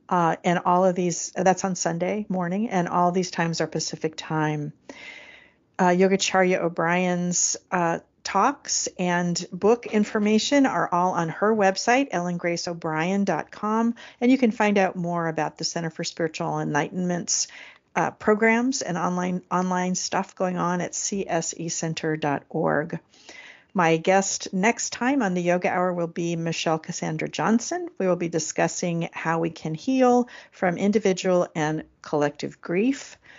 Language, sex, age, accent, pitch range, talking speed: English, female, 50-69, American, 160-205 Hz, 140 wpm